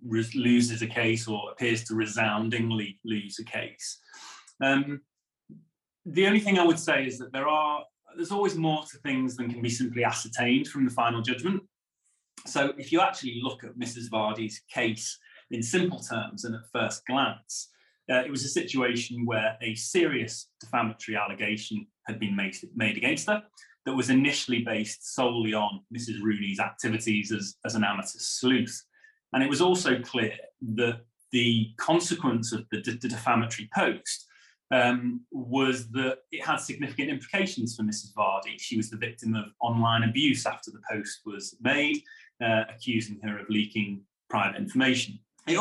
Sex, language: male, English